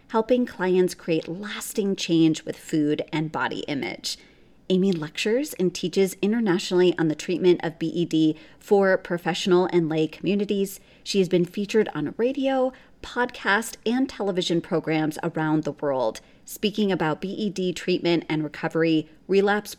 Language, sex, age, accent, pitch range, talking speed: English, female, 30-49, American, 160-195 Hz, 135 wpm